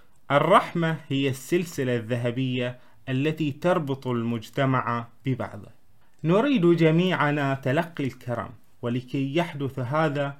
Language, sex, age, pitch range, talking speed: Arabic, male, 30-49, 120-160 Hz, 85 wpm